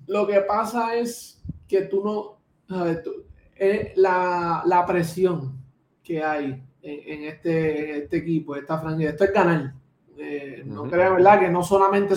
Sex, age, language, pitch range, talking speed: male, 20-39, Spanish, 165-220 Hz, 165 wpm